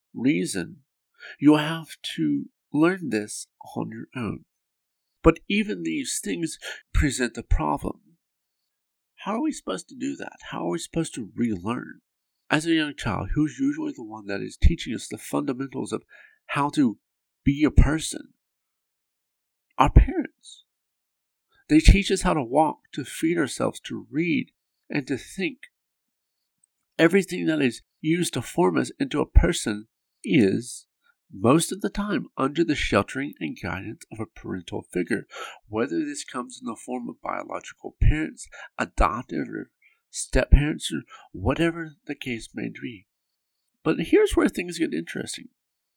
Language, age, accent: English, 50-69, American